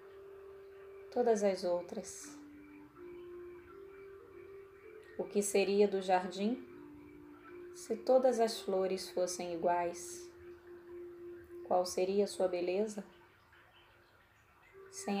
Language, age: Portuguese, 20-39